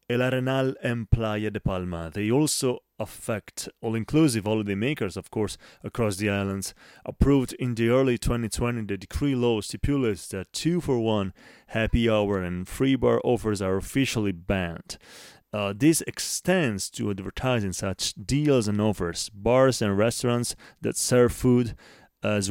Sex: male